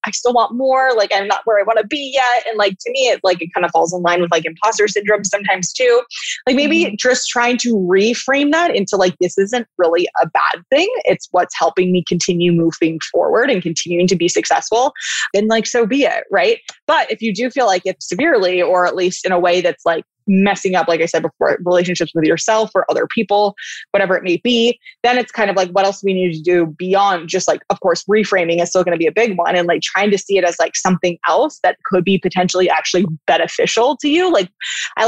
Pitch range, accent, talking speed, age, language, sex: 180-230 Hz, American, 240 wpm, 20-39, English, female